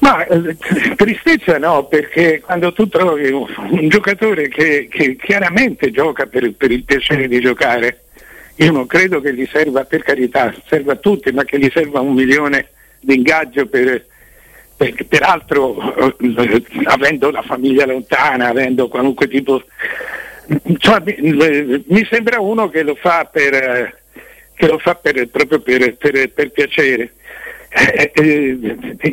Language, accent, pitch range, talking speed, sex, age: Italian, native, 135-175 Hz, 145 wpm, male, 60-79